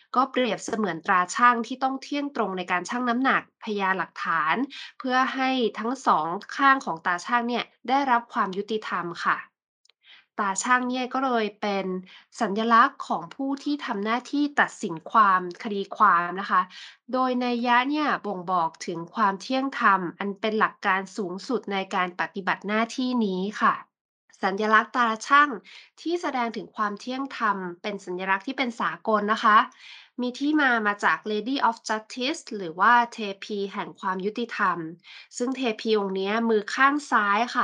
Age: 20-39